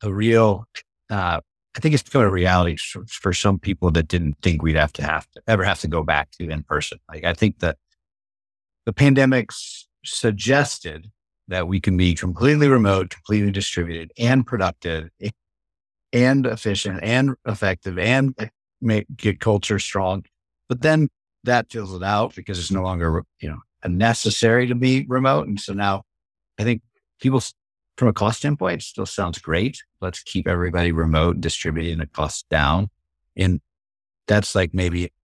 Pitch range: 85-115 Hz